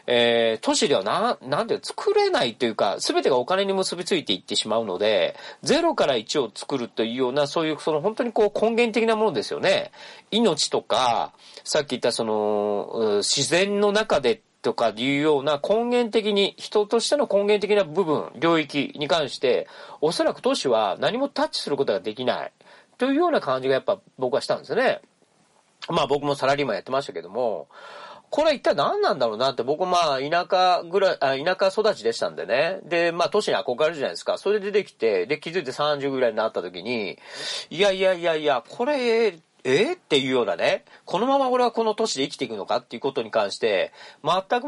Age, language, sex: 40-59, Japanese, male